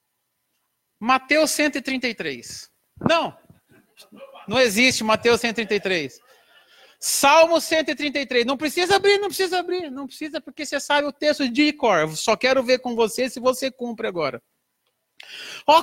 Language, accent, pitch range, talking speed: Portuguese, Brazilian, 220-310 Hz, 130 wpm